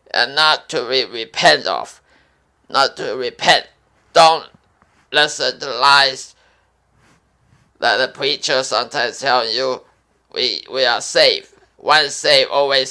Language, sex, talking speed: English, male, 120 wpm